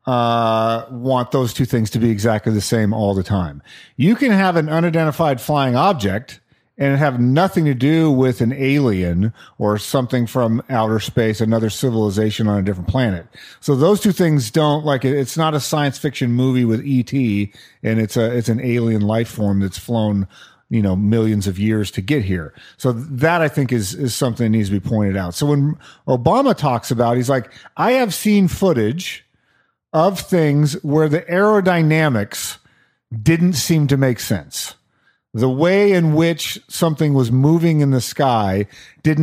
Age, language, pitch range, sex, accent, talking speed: 40-59, English, 110-150 Hz, male, American, 180 wpm